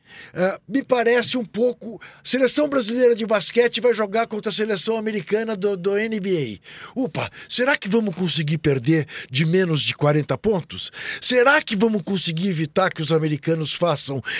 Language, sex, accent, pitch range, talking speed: Portuguese, male, Brazilian, 160-240 Hz, 155 wpm